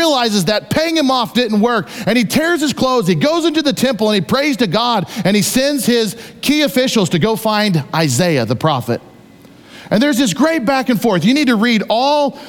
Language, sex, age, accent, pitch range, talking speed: English, male, 40-59, American, 165-240 Hz, 220 wpm